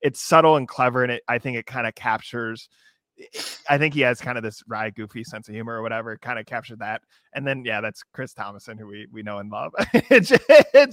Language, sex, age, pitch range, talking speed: English, male, 20-39, 115-160 Hz, 235 wpm